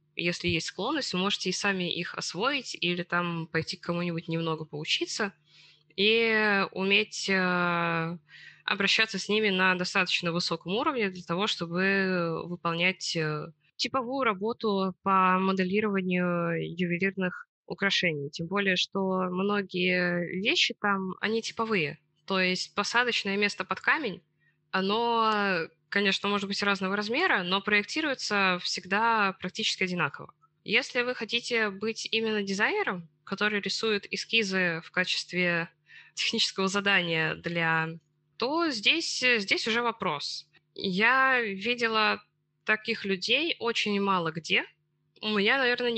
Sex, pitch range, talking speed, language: female, 170-215 Hz, 115 wpm, Russian